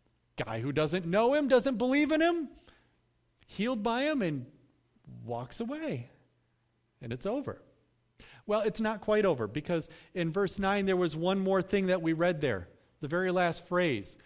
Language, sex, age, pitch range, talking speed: English, male, 40-59, 140-205 Hz, 170 wpm